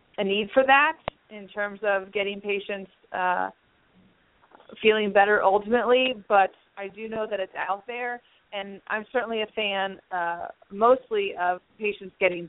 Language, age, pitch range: English, 30-49, 175-205 Hz